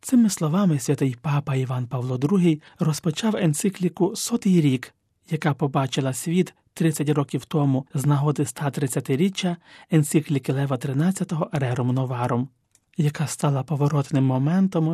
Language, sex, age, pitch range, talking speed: Ukrainian, male, 30-49, 140-180 Hz, 115 wpm